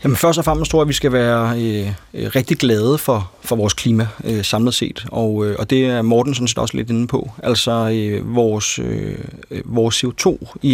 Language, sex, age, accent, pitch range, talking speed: Danish, male, 30-49, native, 110-130 Hz, 220 wpm